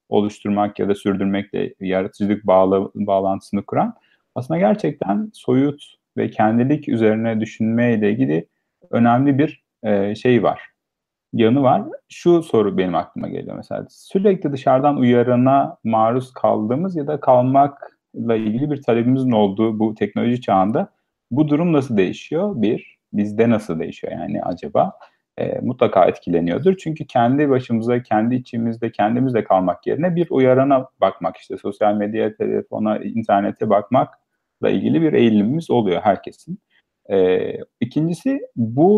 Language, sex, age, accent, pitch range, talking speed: Turkish, male, 40-59, native, 105-150 Hz, 125 wpm